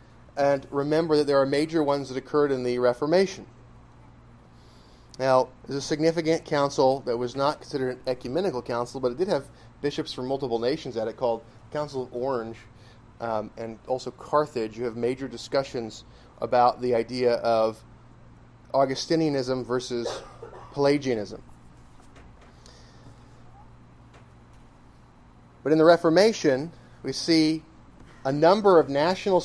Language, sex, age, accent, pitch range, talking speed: English, male, 30-49, American, 120-160 Hz, 130 wpm